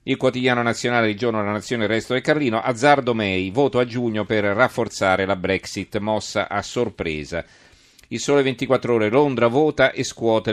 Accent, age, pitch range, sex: native, 40-59, 100-120 Hz, male